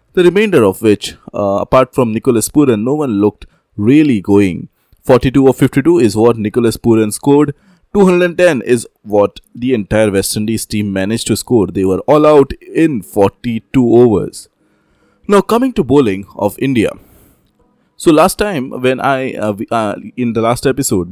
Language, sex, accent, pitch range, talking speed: English, male, Indian, 105-135 Hz, 165 wpm